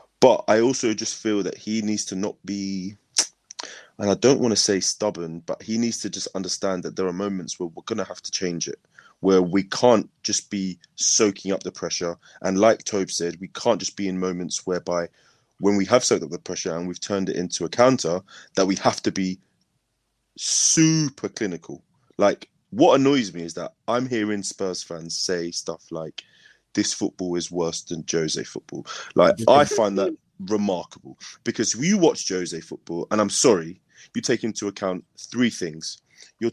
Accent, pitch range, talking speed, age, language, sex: British, 90-120 Hz, 190 wpm, 20-39, English, male